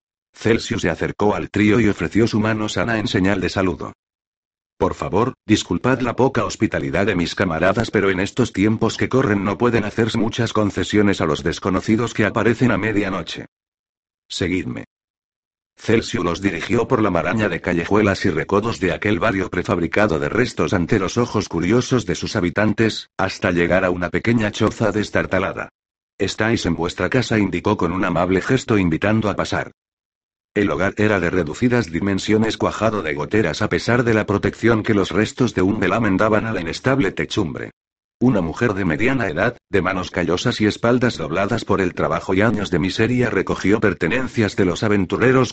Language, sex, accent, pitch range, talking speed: Spanish, male, Spanish, 90-115 Hz, 175 wpm